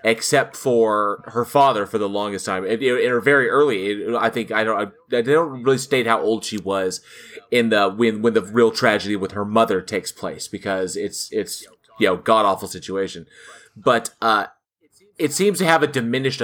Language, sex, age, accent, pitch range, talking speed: English, male, 30-49, American, 110-135 Hz, 185 wpm